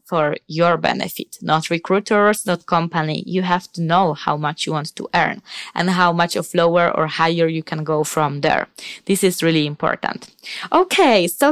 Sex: female